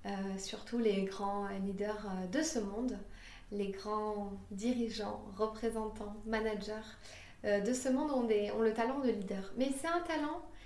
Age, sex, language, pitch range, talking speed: 20-39, female, French, 205-245 Hz, 160 wpm